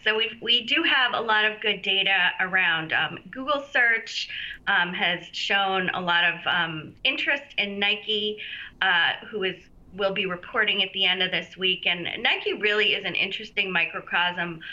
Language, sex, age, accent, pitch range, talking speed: English, female, 30-49, American, 175-210 Hz, 175 wpm